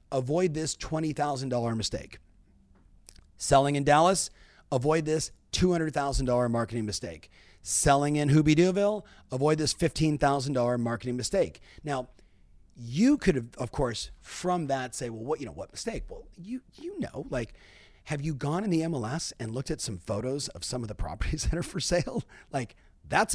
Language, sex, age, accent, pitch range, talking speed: English, male, 40-59, American, 120-160 Hz, 160 wpm